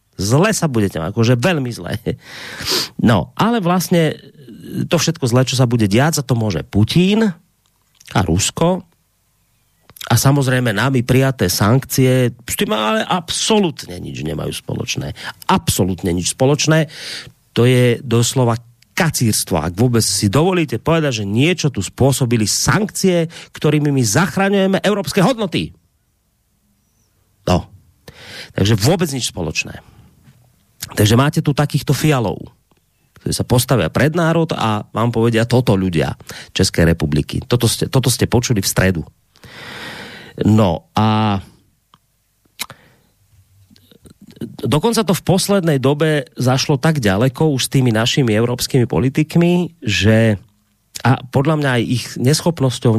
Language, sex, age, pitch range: Slovak, male, 40-59, 105-155 Hz